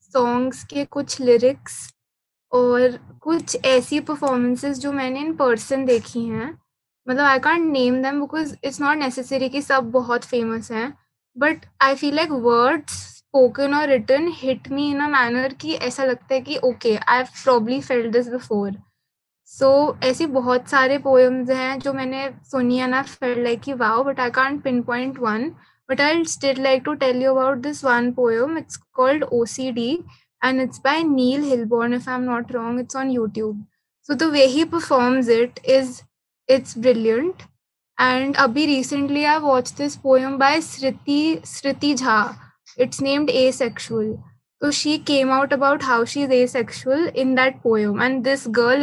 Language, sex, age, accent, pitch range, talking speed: Hindi, female, 20-39, native, 245-280 Hz, 165 wpm